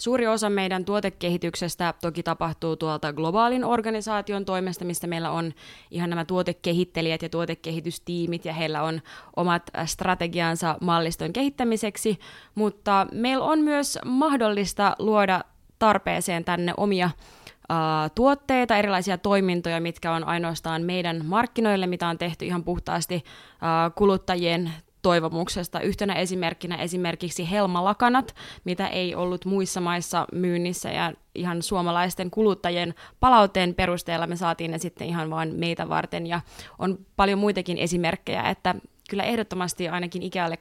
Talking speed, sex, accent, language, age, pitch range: 125 wpm, female, native, Finnish, 20-39, 170-195 Hz